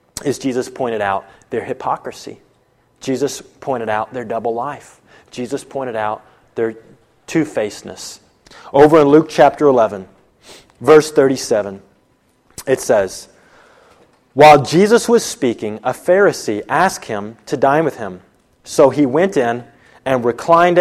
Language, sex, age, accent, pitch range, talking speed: English, male, 30-49, American, 120-170 Hz, 125 wpm